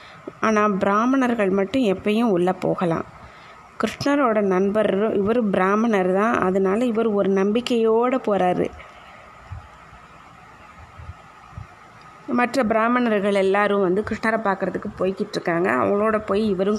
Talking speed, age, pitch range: 90 wpm, 20-39, 190-225 Hz